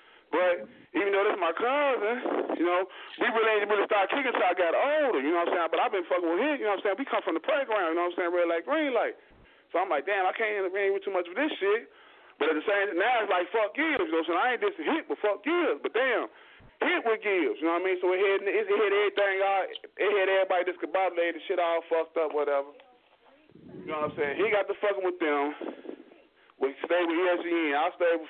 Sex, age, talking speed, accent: male, 30-49, 275 wpm, American